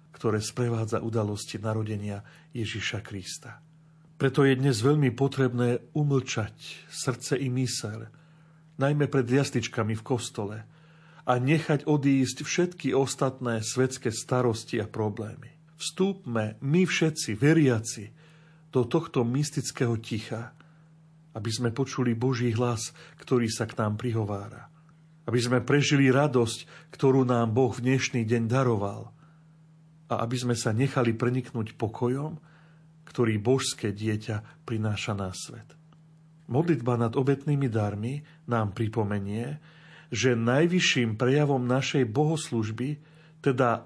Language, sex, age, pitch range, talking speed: Slovak, male, 40-59, 115-155 Hz, 115 wpm